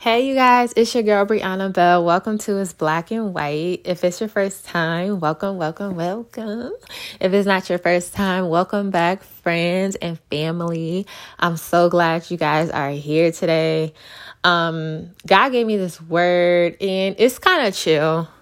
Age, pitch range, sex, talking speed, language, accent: 20-39, 160-195 Hz, female, 170 wpm, English, American